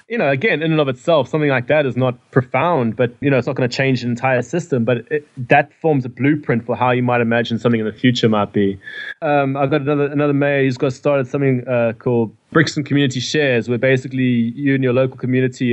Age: 20-39